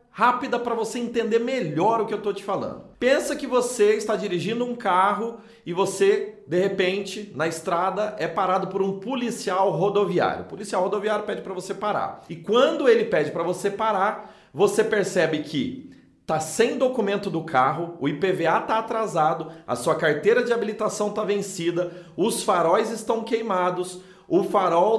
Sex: male